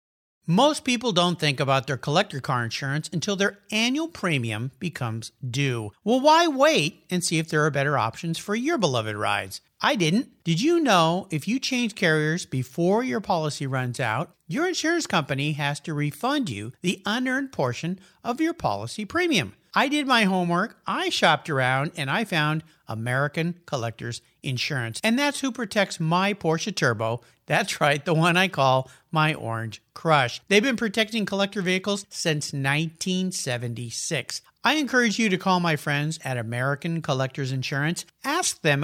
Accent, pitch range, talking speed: American, 140-215 Hz, 165 wpm